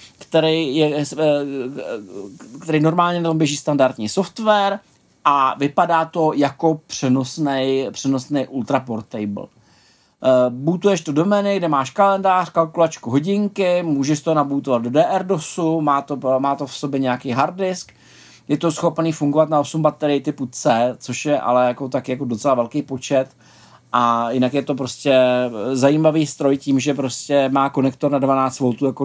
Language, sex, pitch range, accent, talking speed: Czech, male, 130-160 Hz, native, 145 wpm